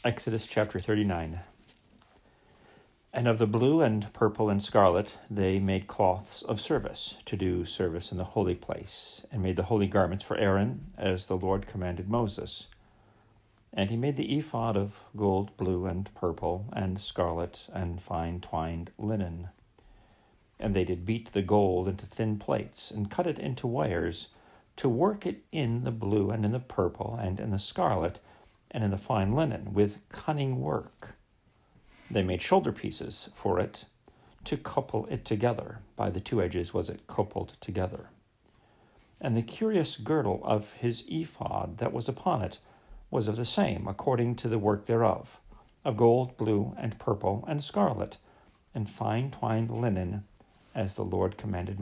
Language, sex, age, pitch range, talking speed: English, male, 50-69, 95-115 Hz, 160 wpm